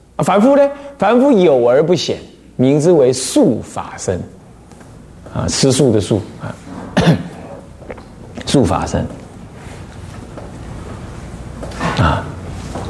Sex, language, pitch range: male, Chinese, 115-175 Hz